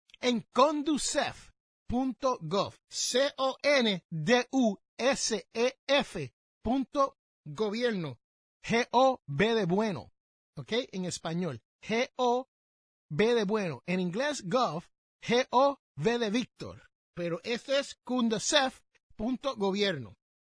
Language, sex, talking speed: Spanish, male, 75 wpm